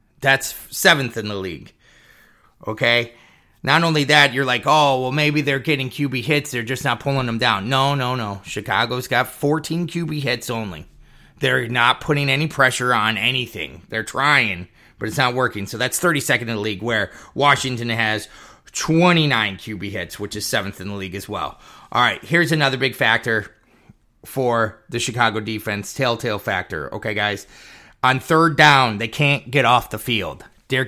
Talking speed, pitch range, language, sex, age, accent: 175 wpm, 110-145 Hz, English, male, 30-49, American